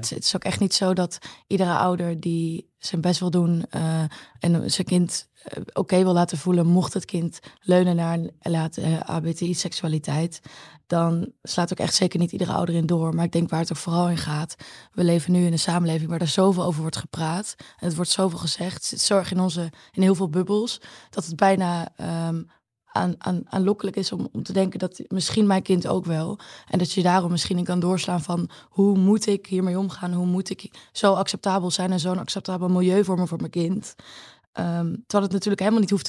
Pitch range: 170-195 Hz